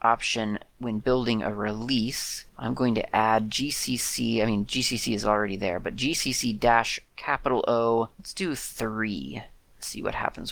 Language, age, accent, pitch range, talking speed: English, 30-49, American, 105-120 Hz, 155 wpm